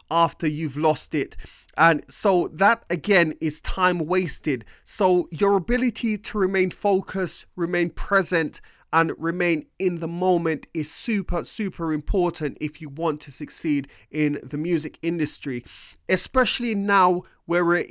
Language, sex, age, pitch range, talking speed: English, male, 30-49, 155-185 Hz, 135 wpm